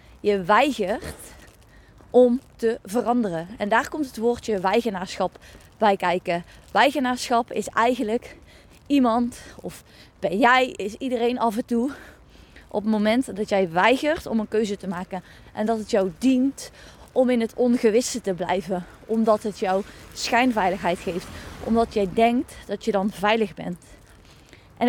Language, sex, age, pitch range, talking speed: Dutch, female, 20-39, 200-245 Hz, 145 wpm